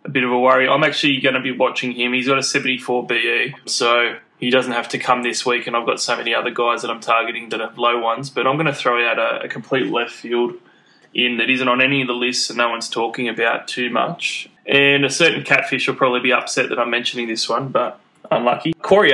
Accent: Australian